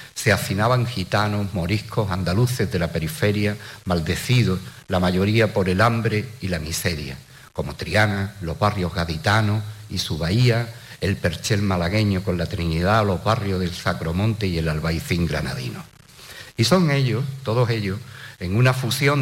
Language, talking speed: Spanish, 145 wpm